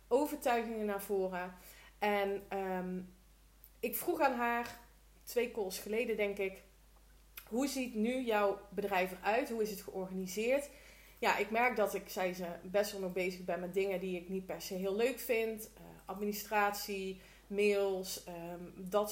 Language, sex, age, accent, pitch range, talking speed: Dutch, female, 30-49, Dutch, 190-230 Hz, 160 wpm